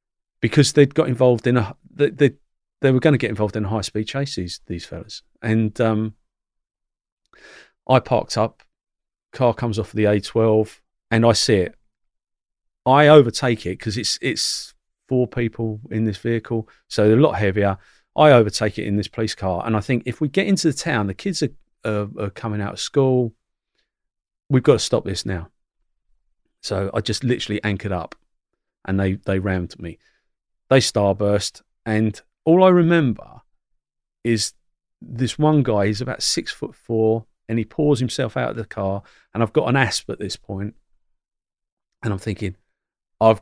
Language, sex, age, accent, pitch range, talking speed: English, male, 40-59, British, 105-130 Hz, 180 wpm